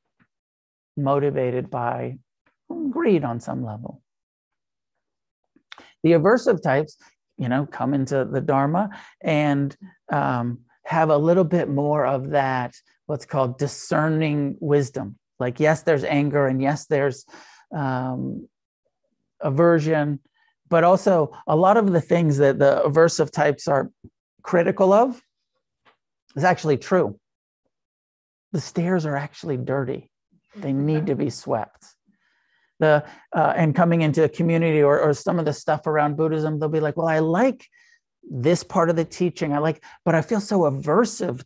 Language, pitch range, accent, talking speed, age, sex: English, 135-170 Hz, American, 140 wpm, 50-69, male